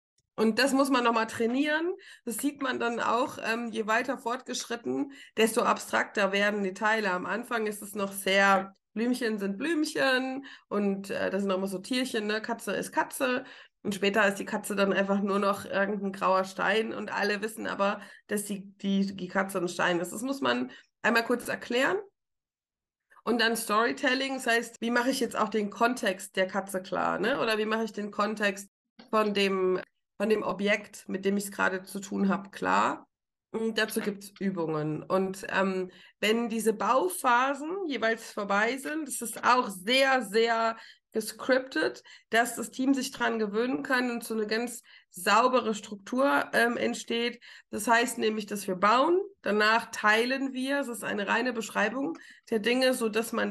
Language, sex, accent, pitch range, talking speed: German, female, German, 200-245 Hz, 180 wpm